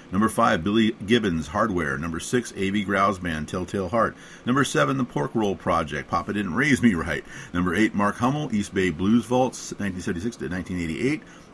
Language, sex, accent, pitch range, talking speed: English, male, American, 90-120 Hz, 170 wpm